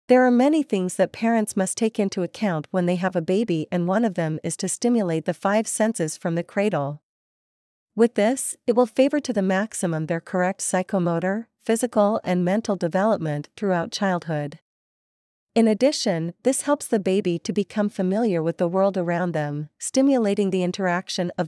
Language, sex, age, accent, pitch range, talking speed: English, female, 40-59, American, 175-220 Hz, 175 wpm